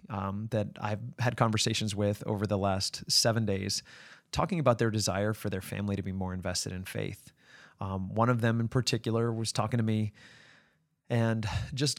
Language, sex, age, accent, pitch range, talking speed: English, male, 20-39, American, 105-125 Hz, 180 wpm